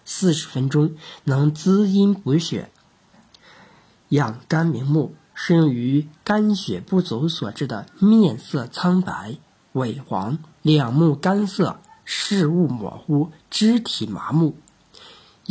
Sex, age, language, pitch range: male, 50-69, Chinese, 140-180 Hz